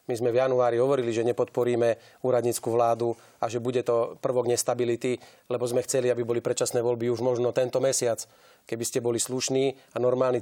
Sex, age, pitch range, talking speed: male, 30-49, 120-130 Hz, 185 wpm